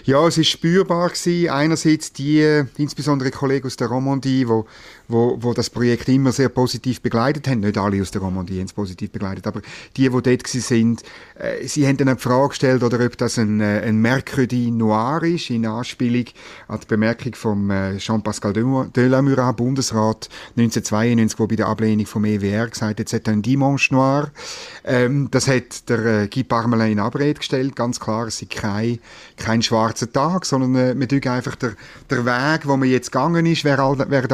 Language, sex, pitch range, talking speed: German, male, 115-140 Hz, 190 wpm